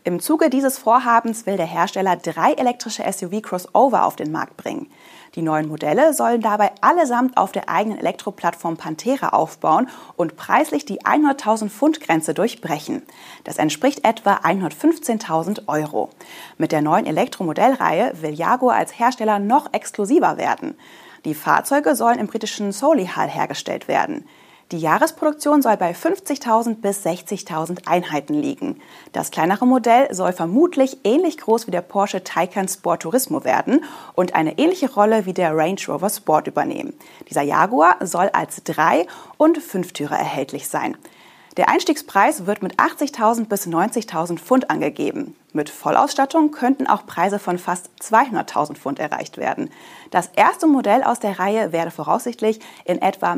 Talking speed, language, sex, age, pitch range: 145 wpm, German, female, 30-49, 175-280 Hz